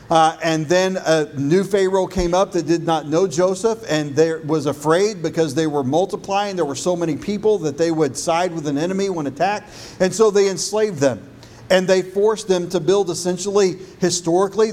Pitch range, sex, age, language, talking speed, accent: 160-190 Hz, male, 50-69, English, 190 wpm, American